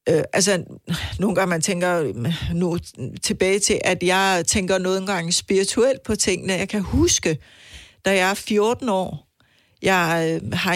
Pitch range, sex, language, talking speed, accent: 165-195 Hz, female, Danish, 145 wpm, native